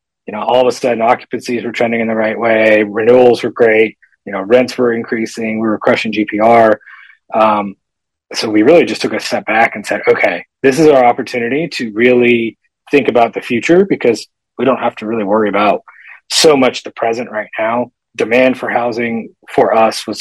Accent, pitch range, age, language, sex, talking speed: American, 105-120 Hz, 30-49, English, male, 200 wpm